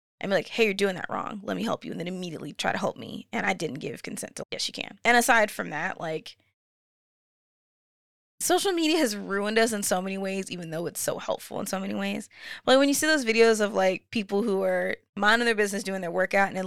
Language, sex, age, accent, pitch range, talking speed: English, female, 20-39, American, 180-215 Hz, 250 wpm